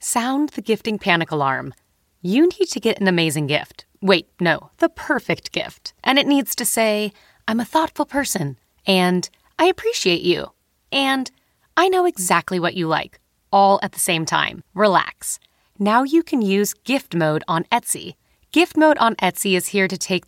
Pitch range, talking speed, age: 175-260 Hz, 175 wpm, 30-49